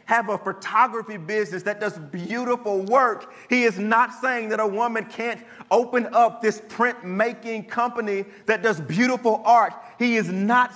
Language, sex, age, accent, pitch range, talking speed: English, male, 40-59, American, 175-230 Hz, 155 wpm